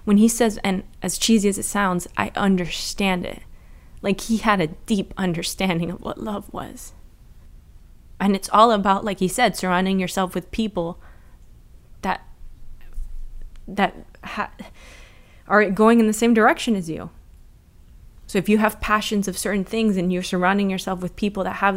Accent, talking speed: American, 165 wpm